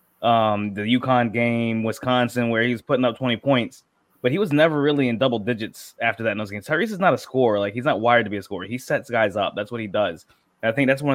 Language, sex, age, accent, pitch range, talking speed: English, male, 20-39, American, 105-125 Hz, 270 wpm